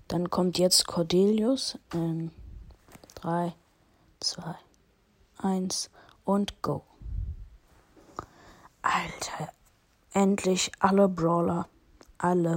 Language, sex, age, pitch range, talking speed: German, female, 20-39, 160-185 Hz, 70 wpm